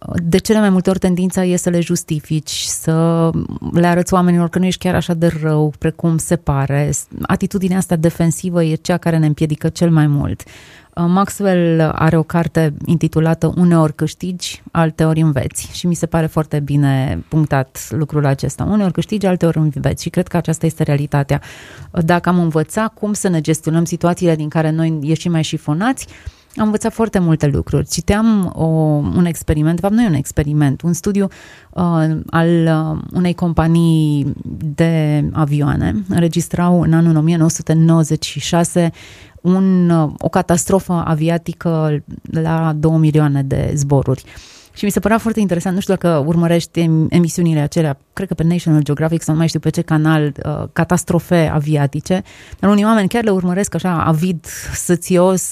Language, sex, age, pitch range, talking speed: Romanian, female, 30-49, 155-180 Hz, 160 wpm